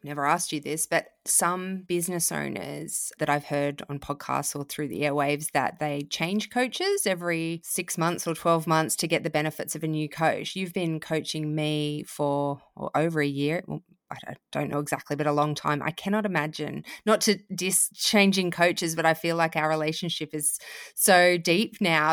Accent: Australian